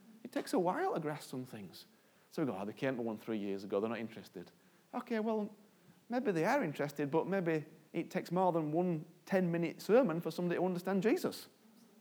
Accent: British